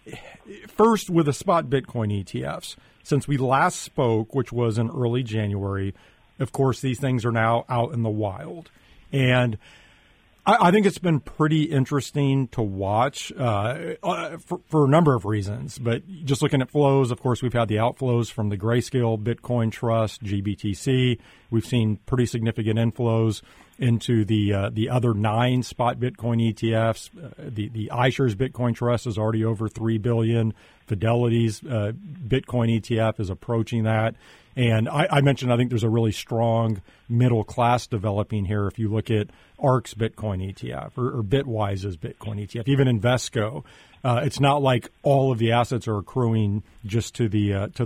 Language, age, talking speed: English, 40-59, 170 wpm